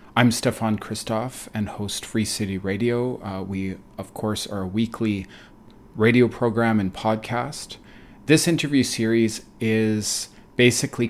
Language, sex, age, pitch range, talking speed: English, male, 40-59, 100-115 Hz, 130 wpm